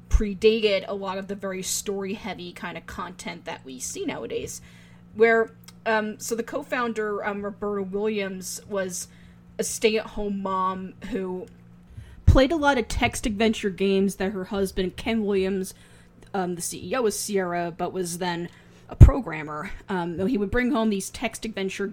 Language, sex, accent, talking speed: English, female, American, 160 wpm